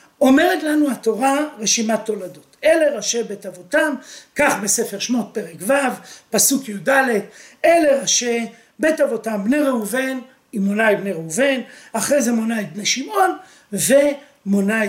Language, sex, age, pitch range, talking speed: Hebrew, male, 50-69, 215-285 Hz, 130 wpm